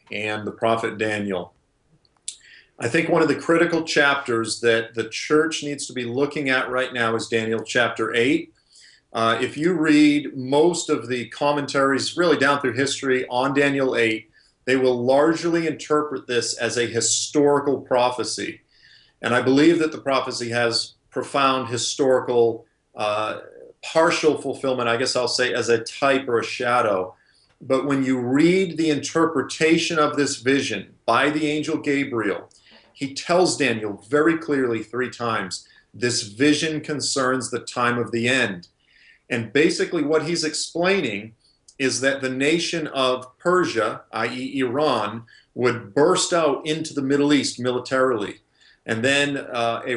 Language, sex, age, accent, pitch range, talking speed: English, male, 40-59, American, 115-150 Hz, 150 wpm